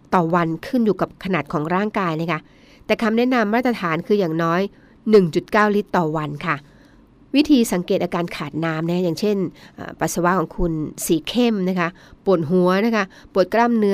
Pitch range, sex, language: 170-220 Hz, female, Thai